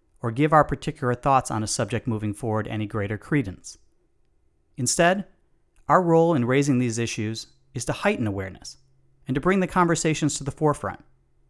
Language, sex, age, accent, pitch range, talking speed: English, male, 40-59, American, 105-155 Hz, 165 wpm